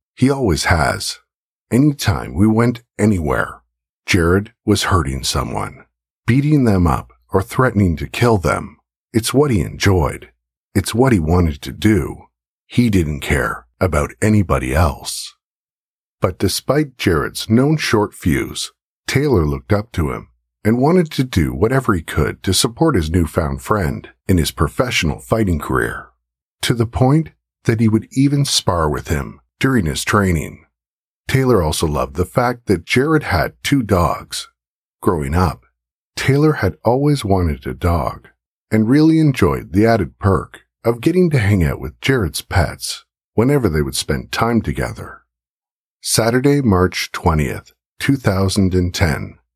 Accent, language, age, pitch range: American, English, 50-69, 75-120 Hz